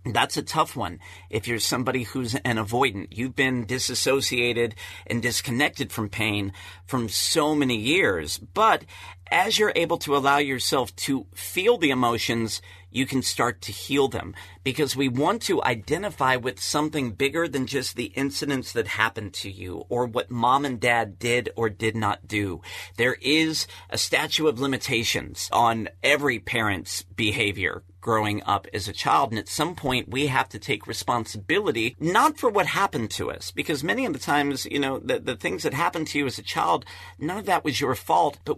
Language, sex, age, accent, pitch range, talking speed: English, male, 40-59, American, 105-145 Hz, 185 wpm